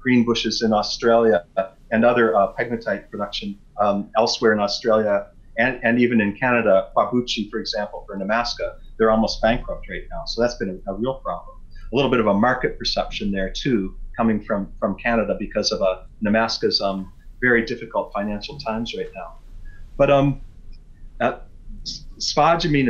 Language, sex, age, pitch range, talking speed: English, male, 30-49, 110-135 Hz, 170 wpm